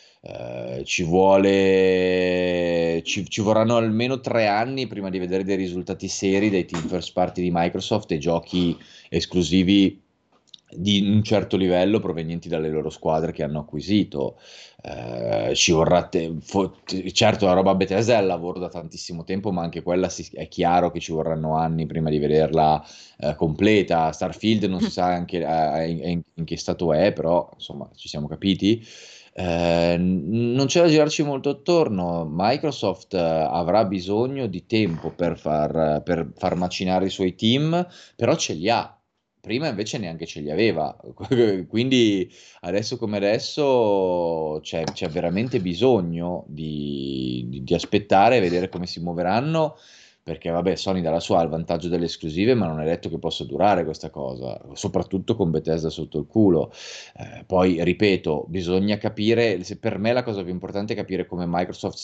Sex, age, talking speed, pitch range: male, 30-49, 160 wpm, 80-100 Hz